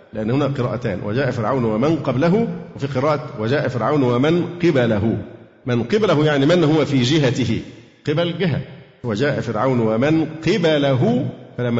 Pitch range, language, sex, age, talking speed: 125-160 Hz, Arabic, male, 50-69, 135 wpm